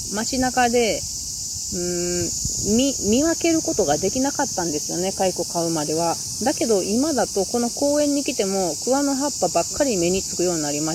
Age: 30-49